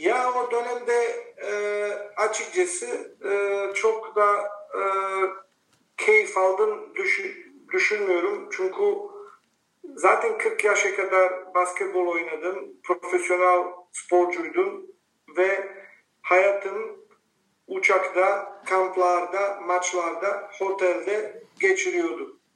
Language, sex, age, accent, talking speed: Turkish, male, 50-69, native, 75 wpm